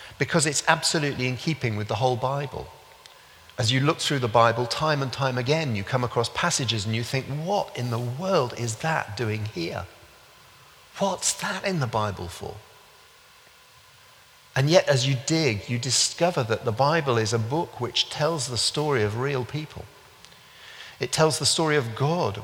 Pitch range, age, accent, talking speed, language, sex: 105-140 Hz, 40-59, British, 175 wpm, English, male